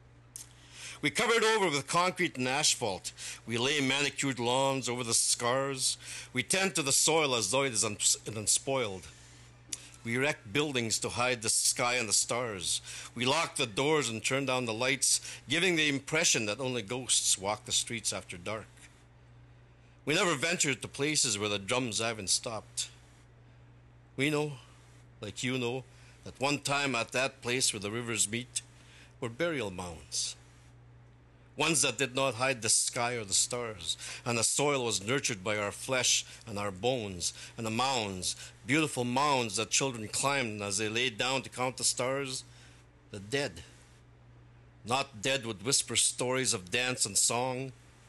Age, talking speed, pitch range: 50-69, 165 wpm, 95-135 Hz